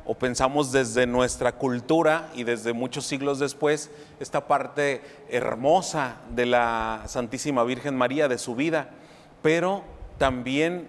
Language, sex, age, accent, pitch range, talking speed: Spanish, male, 40-59, Mexican, 125-155 Hz, 125 wpm